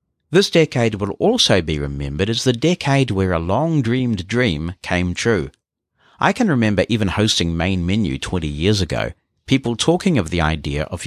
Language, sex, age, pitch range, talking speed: English, male, 50-69, 80-120 Hz, 170 wpm